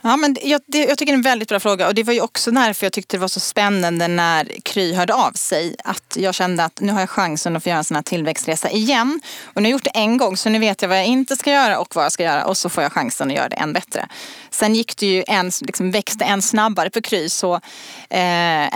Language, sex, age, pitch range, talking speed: Swedish, female, 30-49, 175-230 Hz, 290 wpm